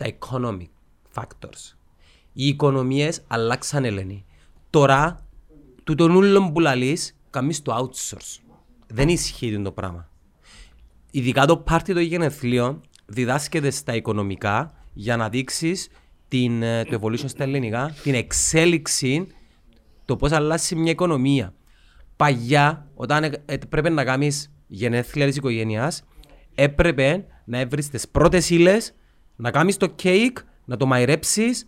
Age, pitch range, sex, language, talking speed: 30-49, 120-165 Hz, male, Greek, 110 wpm